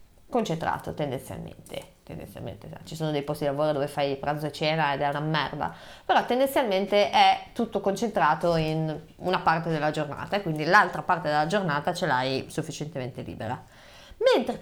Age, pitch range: 30-49, 185-285 Hz